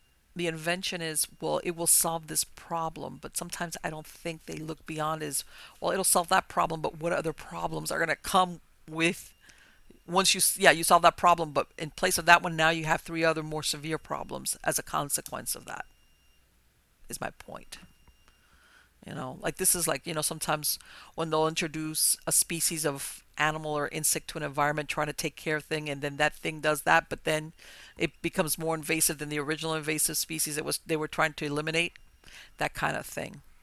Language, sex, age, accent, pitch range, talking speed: English, female, 50-69, American, 140-170 Hz, 205 wpm